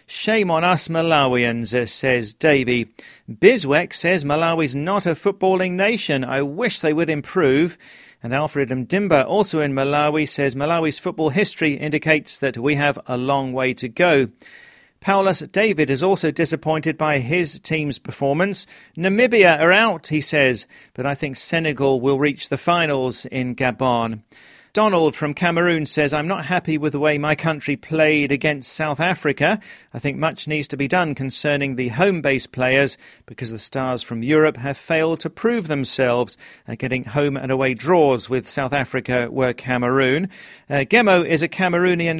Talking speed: 160 wpm